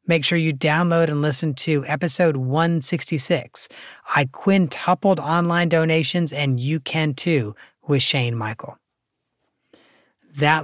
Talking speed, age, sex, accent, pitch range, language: 120 wpm, 40-59, male, American, 135-170 Hz, English